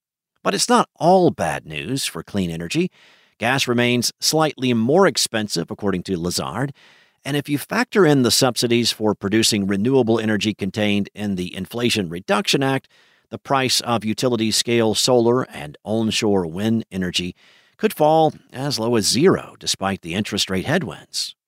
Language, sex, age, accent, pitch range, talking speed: English, male, 50-69, American, 100-130 Hz, 150 wpm